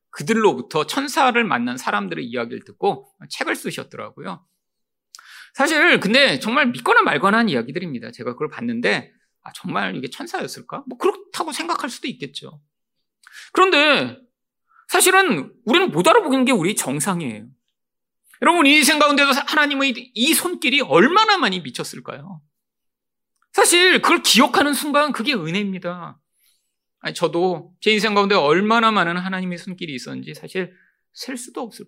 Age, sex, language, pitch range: 40-59, male, Korean, 175-285 Hz